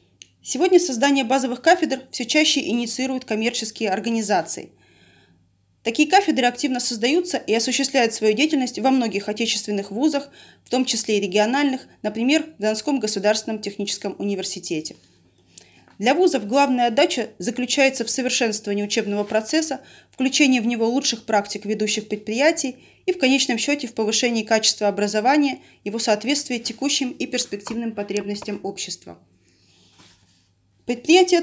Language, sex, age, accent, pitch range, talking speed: Russian, female, 20-39, native, 205-265 Hz, 125 wpm